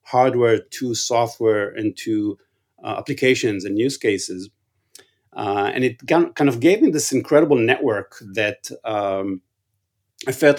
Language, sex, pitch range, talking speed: English, male, 105-135 Hz, 135 wpm